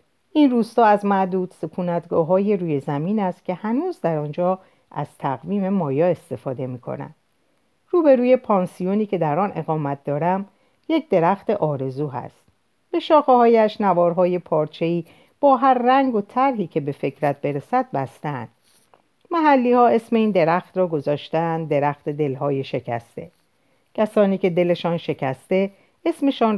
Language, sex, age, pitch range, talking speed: Persian, female, 50-69, 150-220 Hz, 135 wpm